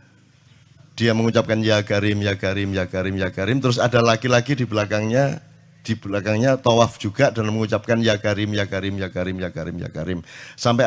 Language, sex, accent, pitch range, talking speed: Indonesian, male, native, 100-125 Hz, 165 wpm